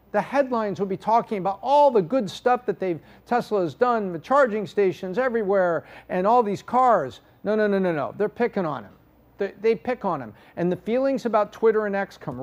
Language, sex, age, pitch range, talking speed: English, male, 50-69, 175-230 Hz, 215 wpm